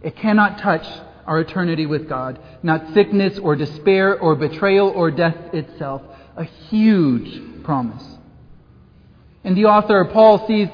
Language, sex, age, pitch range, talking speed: English, male, 40-59, 180-220 Hz, 135 wpm